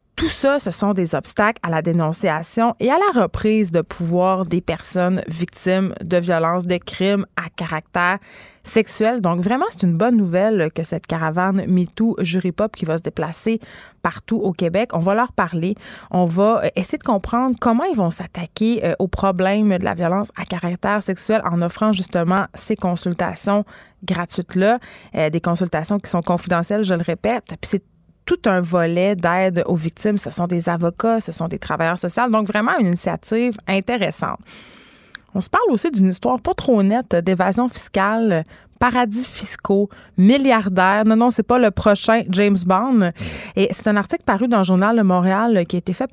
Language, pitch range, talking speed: French, 175-220 Hz, 180 wpm